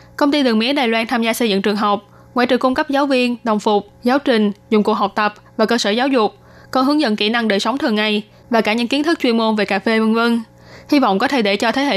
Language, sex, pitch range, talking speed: Vietnamese, female, 210-250 Hz, 295 wpm